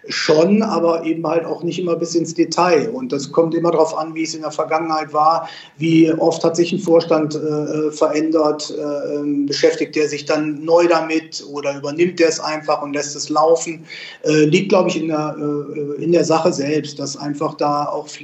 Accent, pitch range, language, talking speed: German, 145-165 Hz, German, 200 wpm